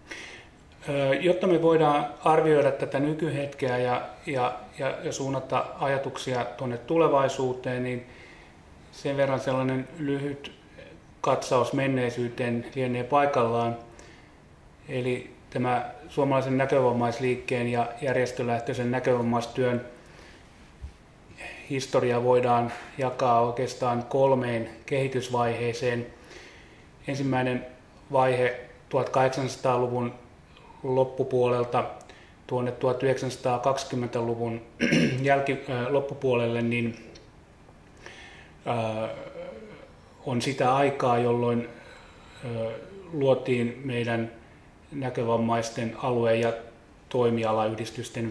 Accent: native